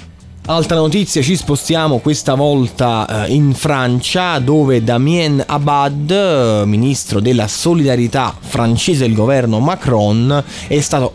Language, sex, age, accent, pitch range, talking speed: Italian, male, 20-39, native, 105-145 Hz, 110 wpm